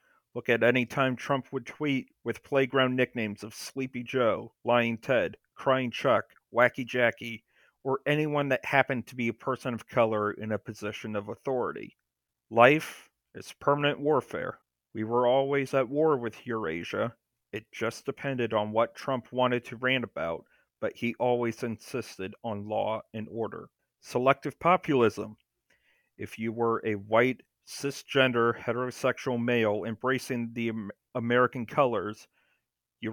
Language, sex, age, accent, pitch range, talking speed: English, male, 40-59, American, 115-130 Hz, 140 wpm